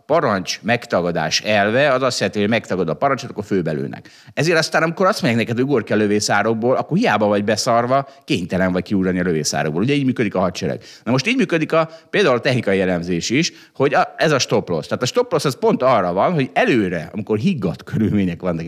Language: Hungarian